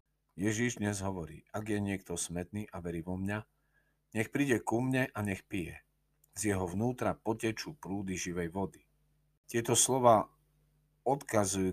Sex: male